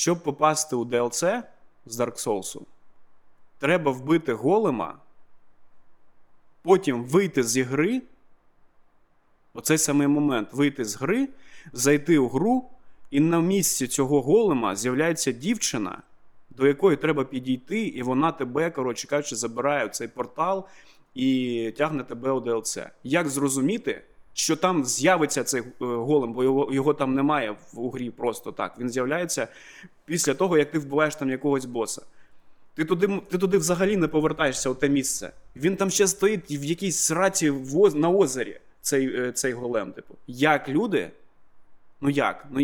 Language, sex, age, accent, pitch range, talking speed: Ukrainian, male, 30-49, native, 130-165 Hz, 140 wpm